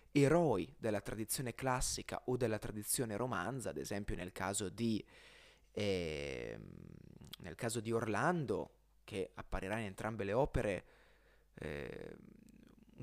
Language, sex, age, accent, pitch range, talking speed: Italian, male, 20-39, native, 105-135 Hz, 115 wpm